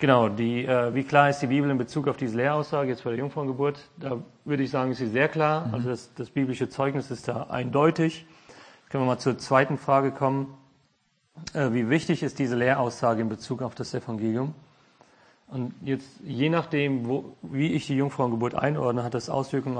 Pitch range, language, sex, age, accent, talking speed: 125-145 Hz, English, male, 40-59, German, 190 wpm